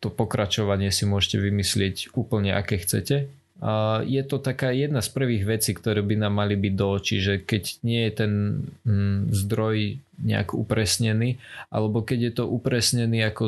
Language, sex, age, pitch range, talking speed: Slovak, male, 20-39, 100-110 Hz, 160 wpm